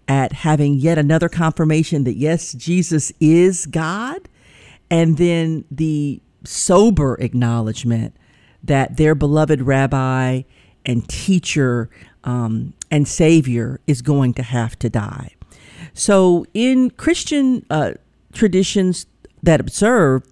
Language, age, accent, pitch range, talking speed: English, 50-69, American, 125-170 Hz, 110 wpm